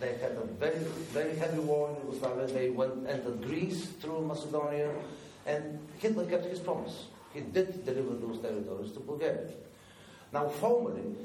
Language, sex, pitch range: English, male, 120-170 Hz